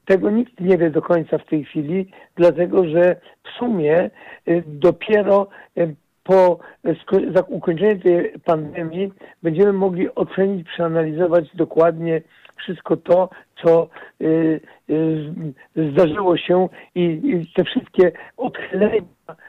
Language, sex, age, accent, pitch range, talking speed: Polish, male, 60-79, native, 160-185 Hz, 100 wpm